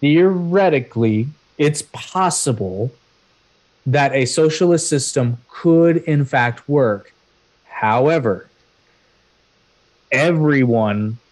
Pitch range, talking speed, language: 120-145 Hz, 70 wpm, English